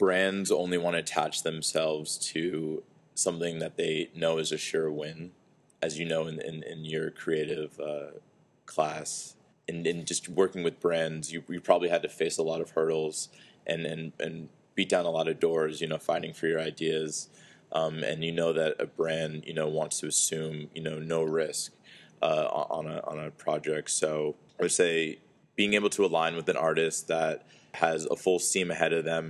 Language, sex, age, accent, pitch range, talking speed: English, male, 20-39, American, 80-85 Hz, 200 wpm